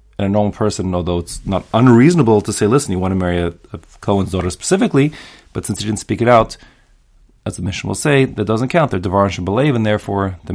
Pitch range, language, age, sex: 95-135 Hz, English, 30-49, male